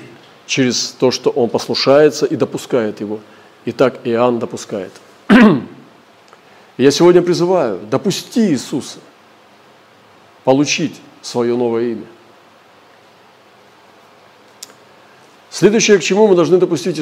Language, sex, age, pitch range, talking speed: Russian, male, 40-59, 120-150 Hz, 100 wpm